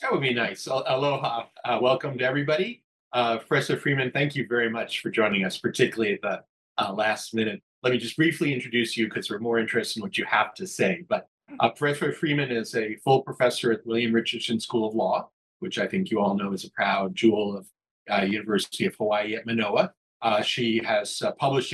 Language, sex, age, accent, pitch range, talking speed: English, male, 40-59, American, 115-145 Hz, 215 wpm